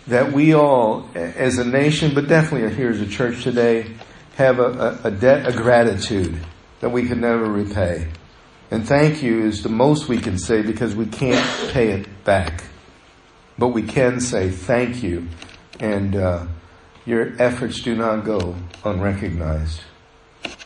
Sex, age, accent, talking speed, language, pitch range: male, 50-69, American, 155 wpm, English, 110-160 Hz